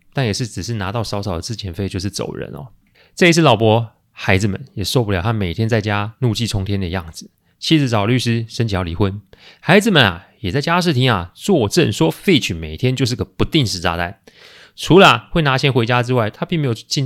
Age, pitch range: 30-49, 95-135 Hz